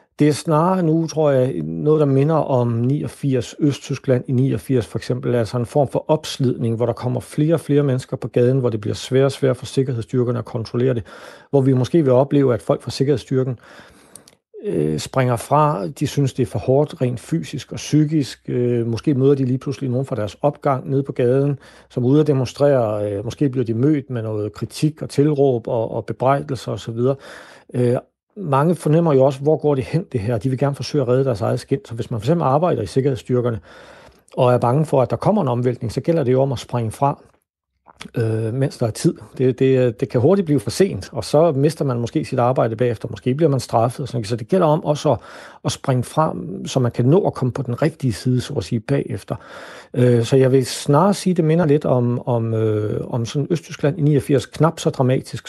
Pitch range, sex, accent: 120-145 Hz, male, native